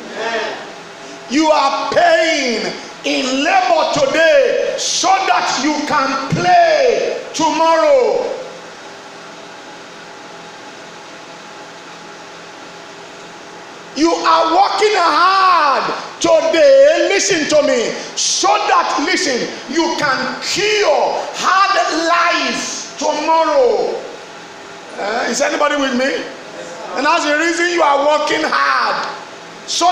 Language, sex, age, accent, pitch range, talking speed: English, male, 40-59, Nigerian, 290-345 Hz, 85 wpm